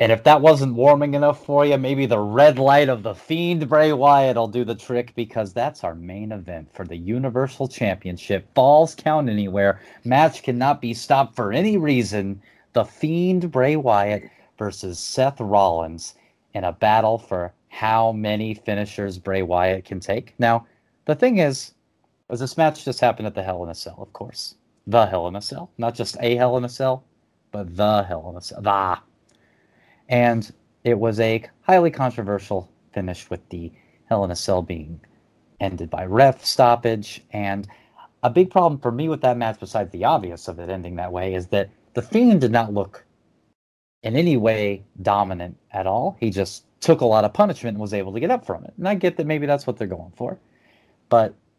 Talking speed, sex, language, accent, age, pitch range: 195 wpm, male, English, American, 30-49, 100-130 Hz